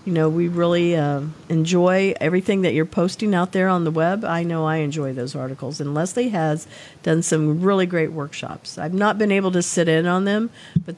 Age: 50-69